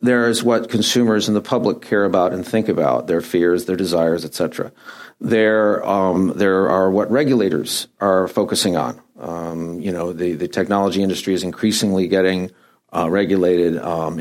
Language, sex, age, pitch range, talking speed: English, male, 50-69, 100-125 Hz, 165 wpm